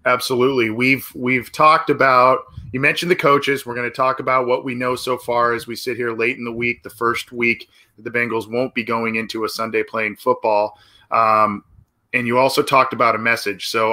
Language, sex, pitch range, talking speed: English, male, 110-130 Hz, 215 wpm